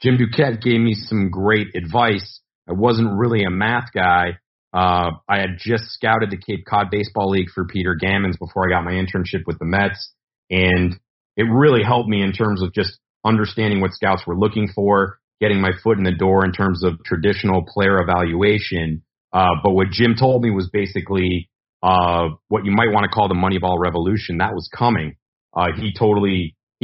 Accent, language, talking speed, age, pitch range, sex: American, English, 190 wpm, 40-59, 90-105 Hz, male